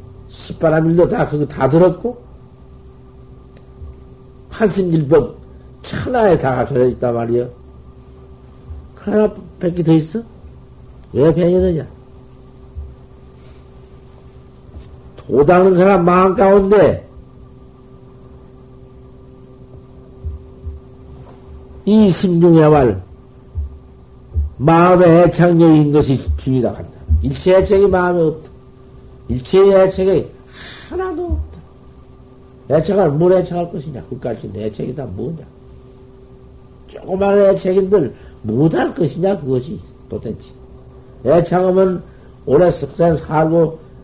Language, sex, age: Korean, male, 60-79